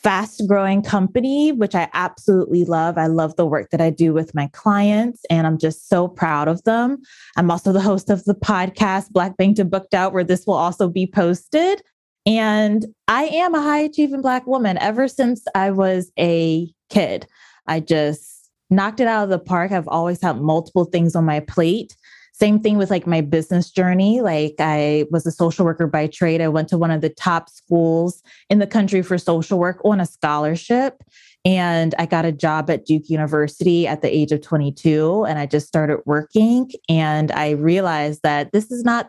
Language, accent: English, American